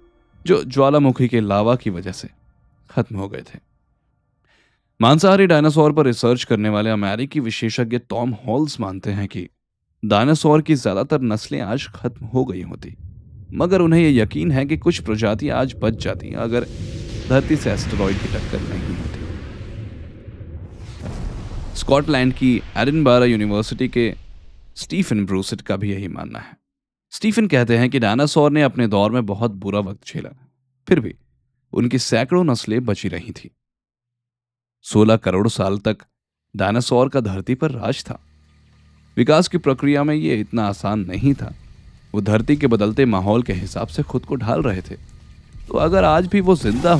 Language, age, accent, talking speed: Hindi, 10-29, native, 140 wpm